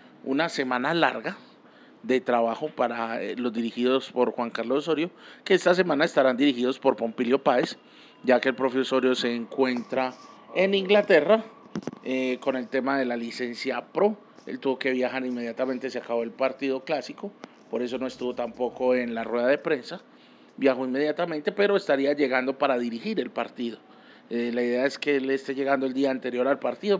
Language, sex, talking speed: Spanish, male, 175 wpm